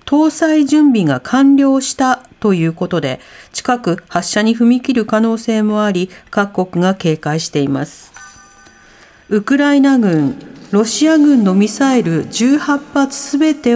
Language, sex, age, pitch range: Japanese, female, 50-69, 180-260 Hz